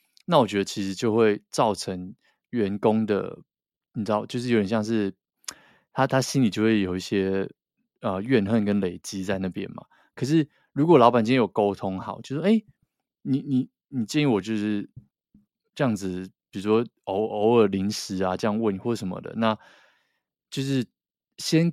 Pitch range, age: 100-125 Hz, 20-39